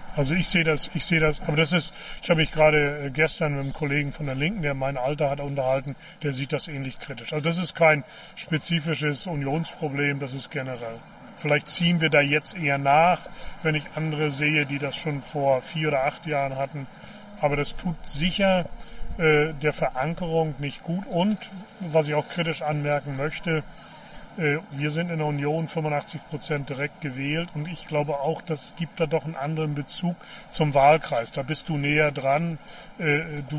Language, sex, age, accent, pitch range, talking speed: German, male, 40-59, German, 145-165 Hz, 185 wpm